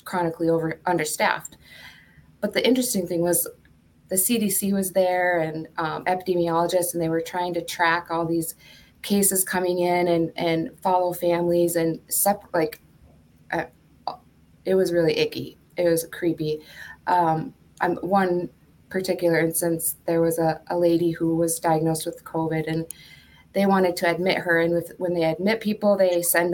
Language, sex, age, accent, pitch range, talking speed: English, female, 20-39, American, 165-185 Hz, 160 wpm